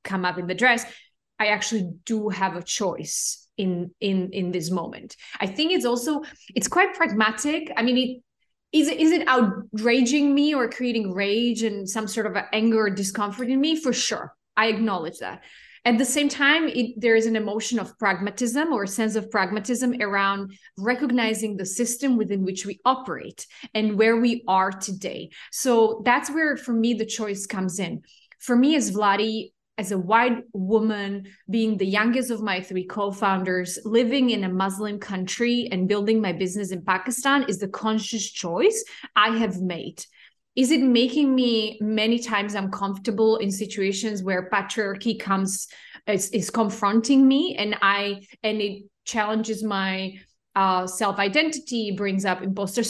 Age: 20-39